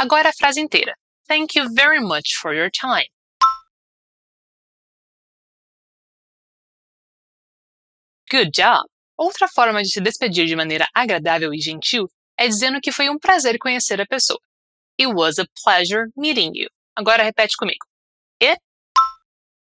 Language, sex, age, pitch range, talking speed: Portuguese, female, 20-39, 205-290 Hz, 125 wpm